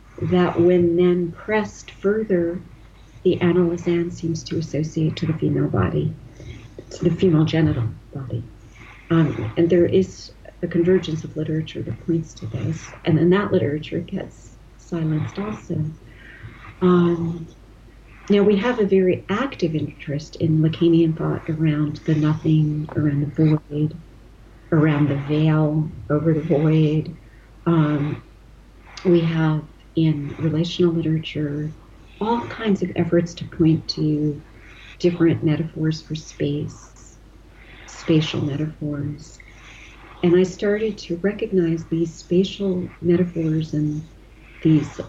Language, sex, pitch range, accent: English, female, 145-175 Hz, American